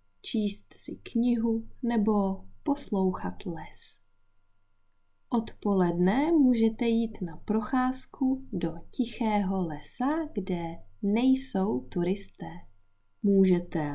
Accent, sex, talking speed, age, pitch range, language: Czech, female, 75 wpm, 20-39, 165-235 Hz, English